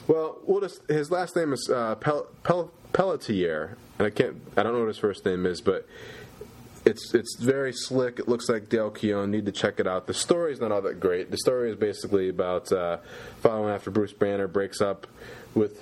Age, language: 20-39, English